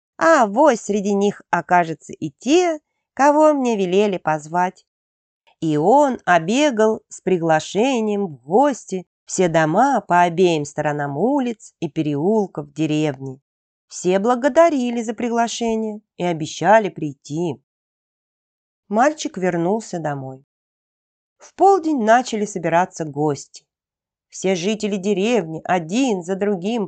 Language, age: Russian, 40-59